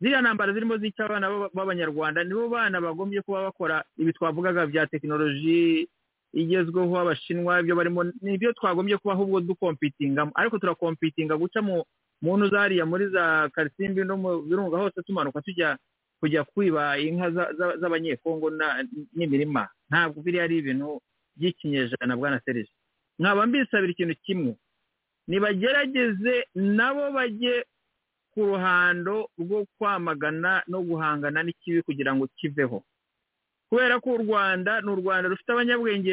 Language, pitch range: English, 160-220 Hz